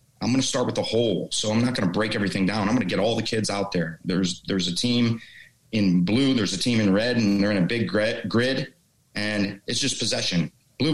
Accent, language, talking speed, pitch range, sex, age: American, English, 260 wpm, 100-125 Hz, male, 30-49